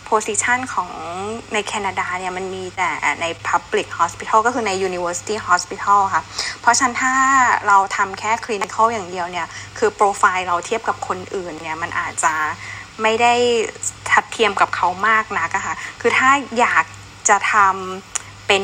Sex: female